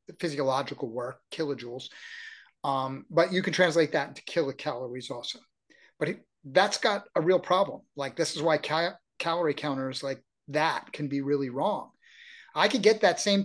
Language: English